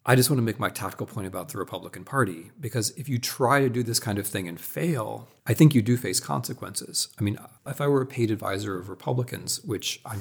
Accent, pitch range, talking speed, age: American, 100-130 Hz, 245 wpm, 40-59